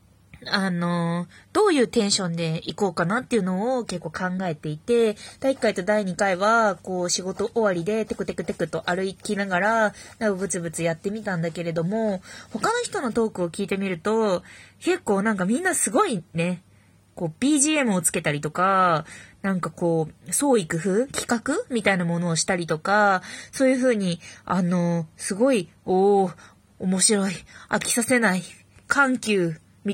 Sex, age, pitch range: female, 20-39, 175-230 Hz